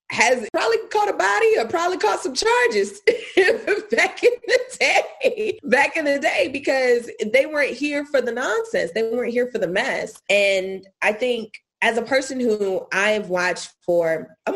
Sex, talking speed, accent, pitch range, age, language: female, 175 wpm, American, 175-295 Hz, 20-39, English